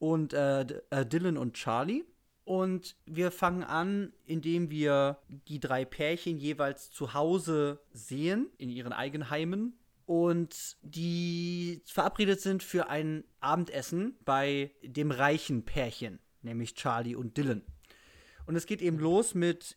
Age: 30-49